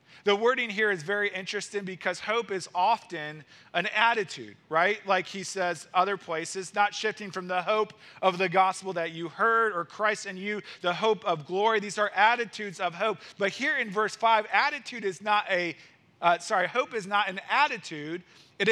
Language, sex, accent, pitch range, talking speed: English, male, American, 175-220 Hz, 190 wpm